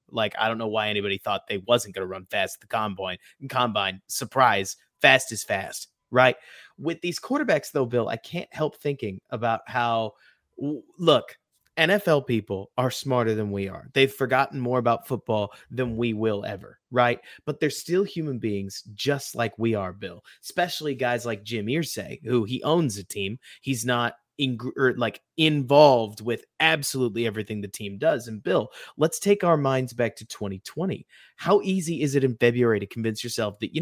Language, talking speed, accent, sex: English, 185 wpm, American, male